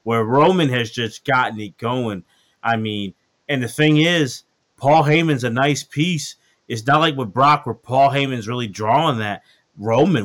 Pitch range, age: 115-150 Hz, 30-49